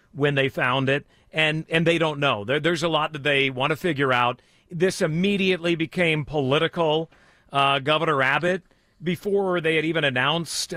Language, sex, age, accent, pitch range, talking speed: English, male, 50-69, American, 135-165 Hz, 175 wpm